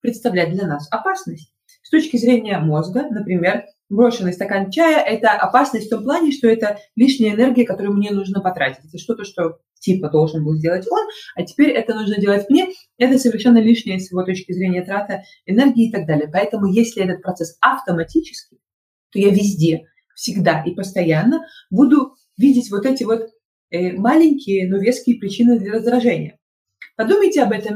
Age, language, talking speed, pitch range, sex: 20-39, Russian, 170 wpm, 185-245 Hz, female